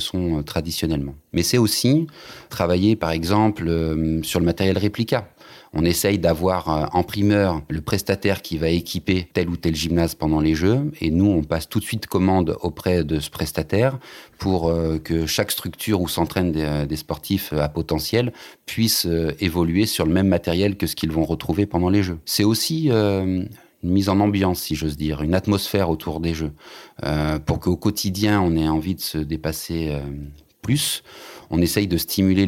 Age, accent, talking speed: 30-49, French, 185 wpm